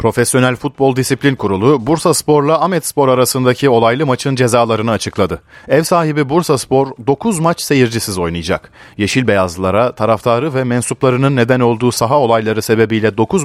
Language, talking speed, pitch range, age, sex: Turkish, 145 wpm, 105-150 Hz, 40-59, male